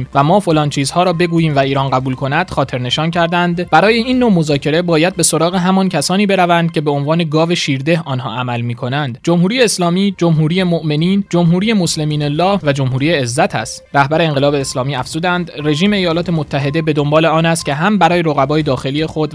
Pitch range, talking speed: 140-175 Hz, 185 wpm